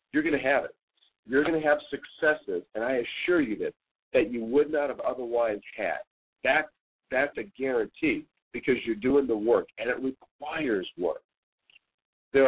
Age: 50-69